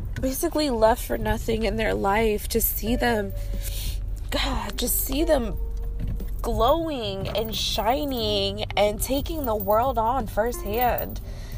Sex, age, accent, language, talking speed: female, 20-39, American, English, 120 wpm